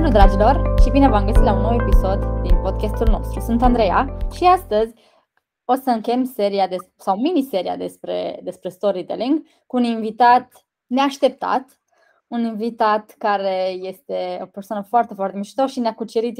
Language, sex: Romanian, female